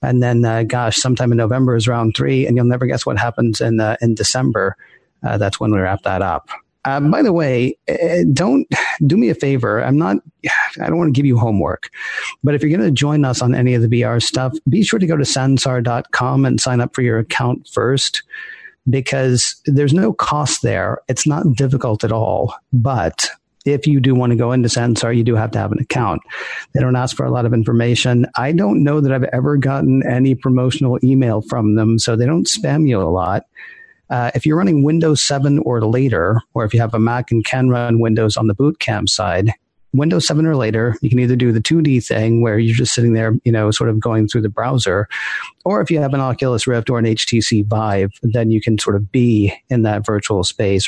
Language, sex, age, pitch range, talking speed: English, male, 40-59, 110-135 Hz, 225 wpm